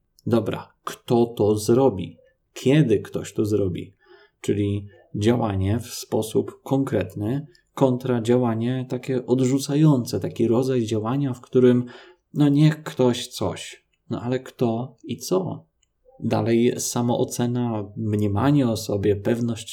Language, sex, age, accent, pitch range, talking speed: Polish, male, 20-39, native, 110-130 Hz, 115 wpm